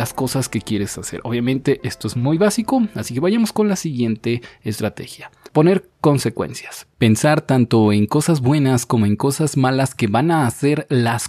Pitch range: 105-135 Hz